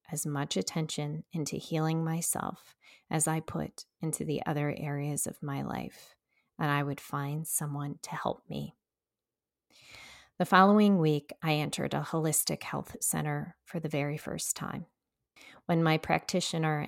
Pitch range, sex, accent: 150-170 Hz, female, American